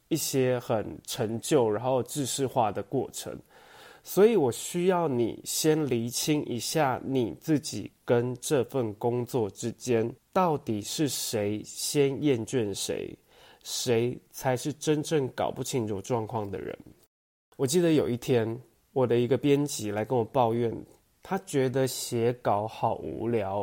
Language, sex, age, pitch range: Chinese, male, 20-39, 115-145 Hz